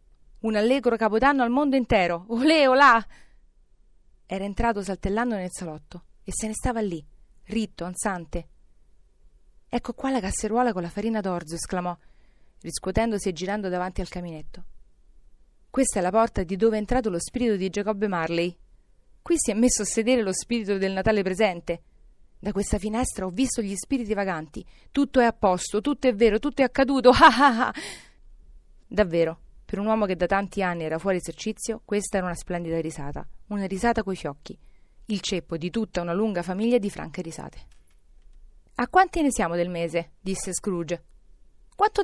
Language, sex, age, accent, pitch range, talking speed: Italian, female, 30-49, native, 175-230 Hz, 165 wpm